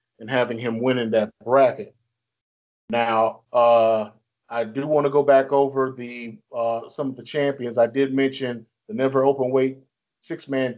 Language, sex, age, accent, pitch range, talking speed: English, male, 40-59, American, 115-135 Hz, 160 wpm